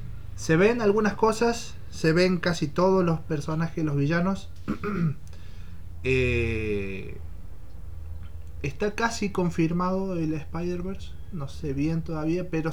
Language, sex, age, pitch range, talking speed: Spanish, male, 30-49, 105-150 Hz, 110 wpm